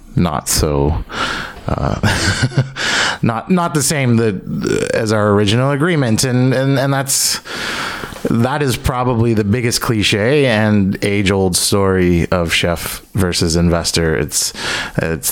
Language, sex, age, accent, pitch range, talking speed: English, male, 30-49, American, 95-120 Hz, 125 wpm